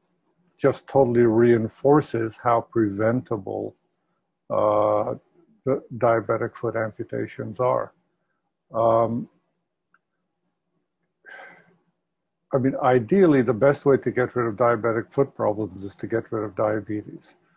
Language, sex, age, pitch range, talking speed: English, male, 50-69, 115-135 Hz, 100 wpm